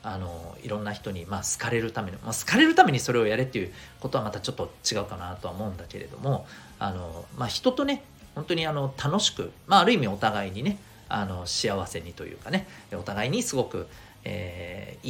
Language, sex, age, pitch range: Japanese, male, 40-59, 105-175 Hz